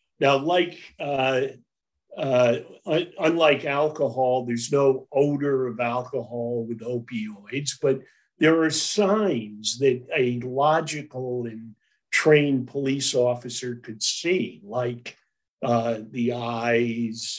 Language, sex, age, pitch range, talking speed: English, male, 50-69, 120-150 Hz, 105 wpm